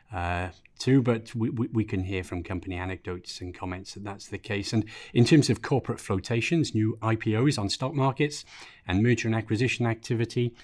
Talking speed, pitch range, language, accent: 180 wpm, 95-115 Hz, English, British